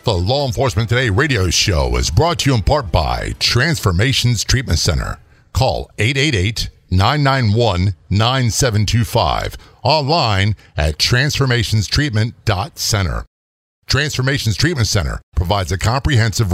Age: 50-69